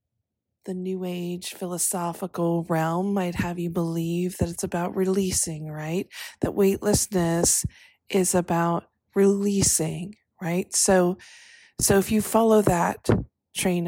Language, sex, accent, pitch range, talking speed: English, female, American, 165-190 Hz, 115 wpm